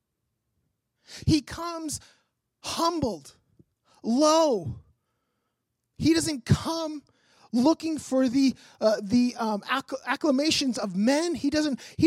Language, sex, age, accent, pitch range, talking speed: English, male, 30-49, American, 250-320 Hz, 100 wpm